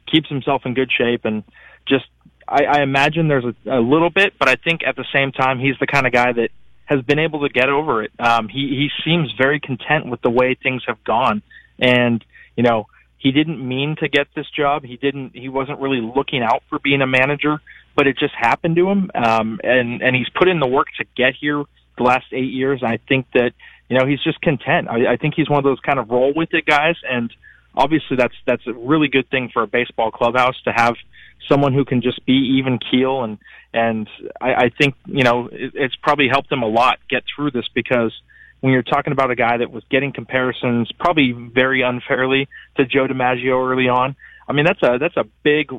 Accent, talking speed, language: American, 225 wpm, English